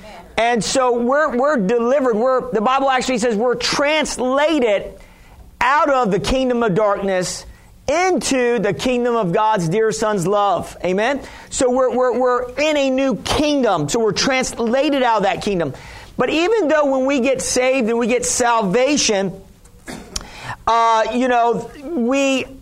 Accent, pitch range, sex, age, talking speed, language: American, 205-255 Hz, male, 50-69, 150 wpm, English